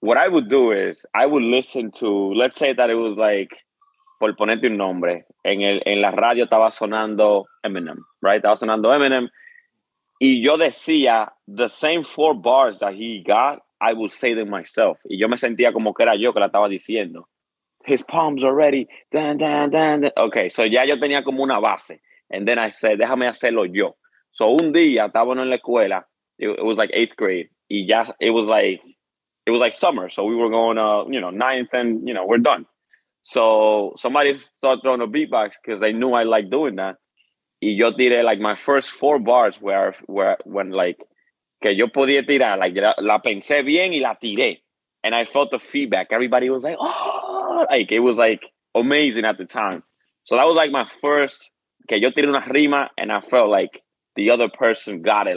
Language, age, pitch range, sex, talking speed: English, 20-39, 110-150 Hz, male, 205 wpm